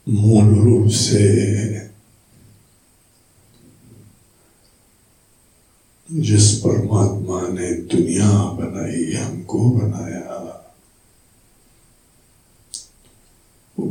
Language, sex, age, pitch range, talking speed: Hindi, male, 60-79, 105-120 Hz, 45 wpm